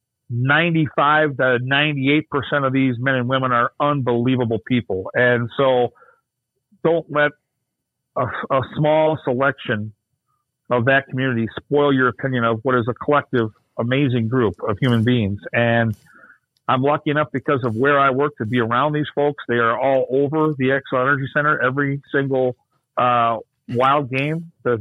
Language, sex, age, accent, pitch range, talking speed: English, male, 50-69, American, 120-145 Hz, 150 wpm